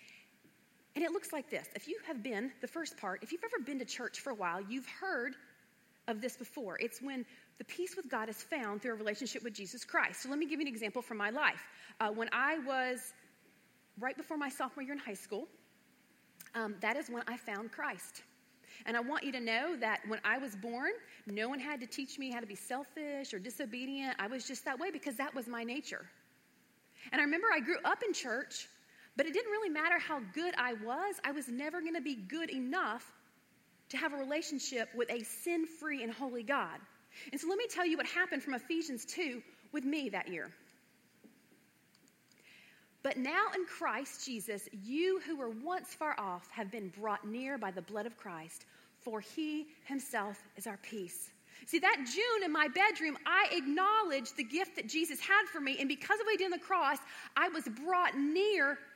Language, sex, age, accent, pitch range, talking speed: English, female, 30-49, American, 235-325 Hz, 210 wpm